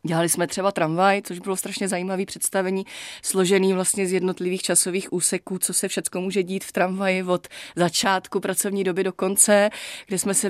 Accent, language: native, Czech